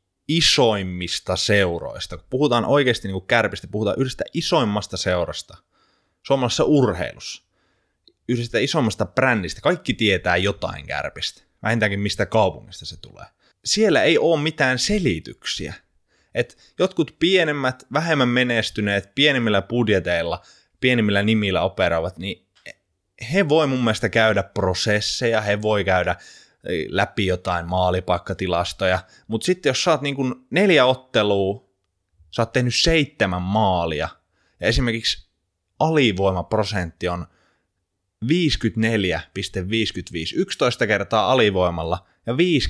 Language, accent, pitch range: Finnish, native, 95-125 Hz